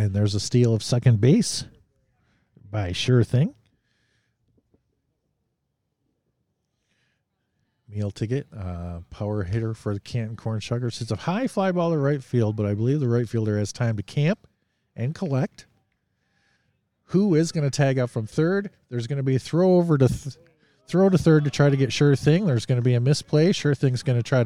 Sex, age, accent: male, 40-59, American